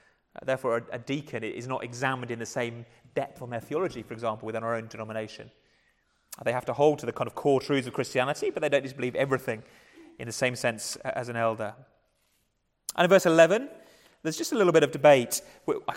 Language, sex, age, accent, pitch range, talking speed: English, male, 30-49, British, 120-155 Hz, 205 wpm